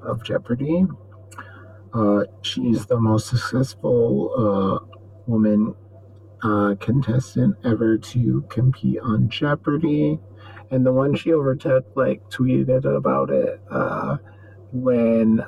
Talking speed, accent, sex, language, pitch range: 105 wpm, American, male, English, 105-130 Hz